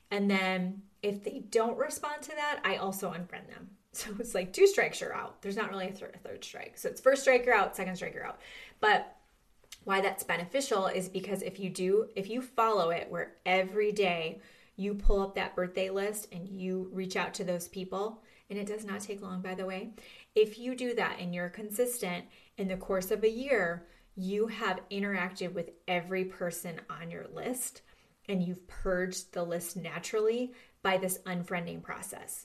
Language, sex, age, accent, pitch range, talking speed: English, female, 20-39, American, 180-220 Hz, 195 wpm